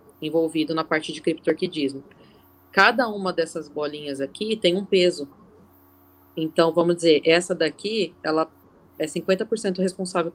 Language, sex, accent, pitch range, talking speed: Portuguese, female, Brazilian, 155-185 Hz, 130 wpm